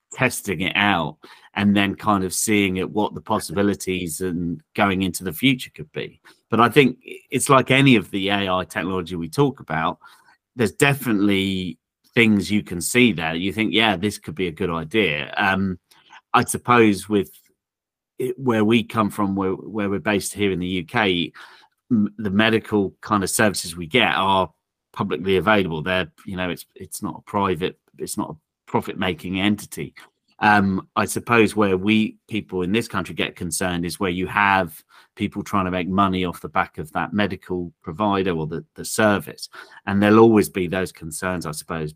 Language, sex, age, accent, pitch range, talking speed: English, male, 30-49, British, 90-105 Hz, 185 wpm